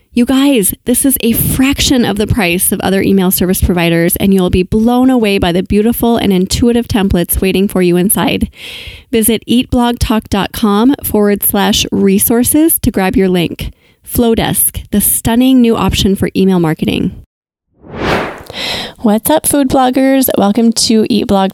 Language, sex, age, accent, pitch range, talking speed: English, female, 30-49, American, 195-240 Hz, 150 wpm